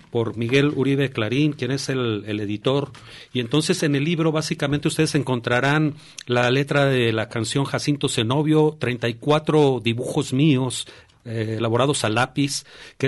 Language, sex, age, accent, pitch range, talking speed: Spanish, male, 40-59, Mexican, 120-150 Hz, 145 wpm